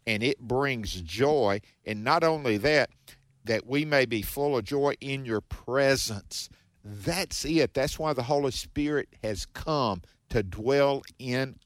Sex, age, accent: male, 50-69, American